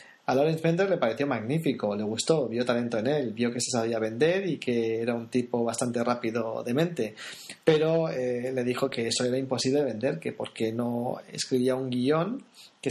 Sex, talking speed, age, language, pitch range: male, 200 wpm, 30-49, Spanish, 125-155 Hz